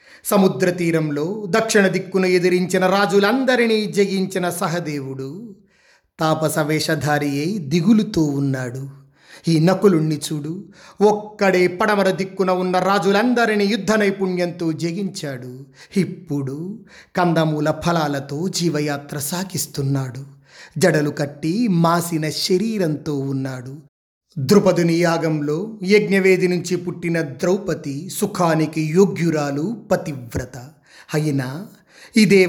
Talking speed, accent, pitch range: 85 wpm, native, 150-190 Hz